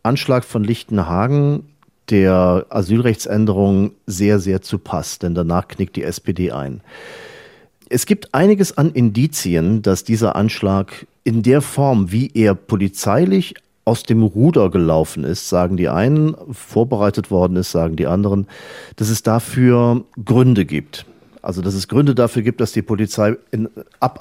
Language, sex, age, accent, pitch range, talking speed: German, male, 40-59, German, 100-140 Hz, 145 wpm